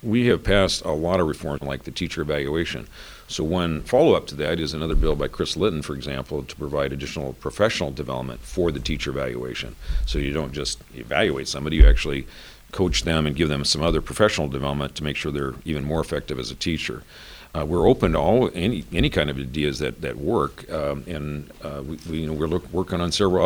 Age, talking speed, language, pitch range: 50-69, 215 wpm, English, 70-85 Hz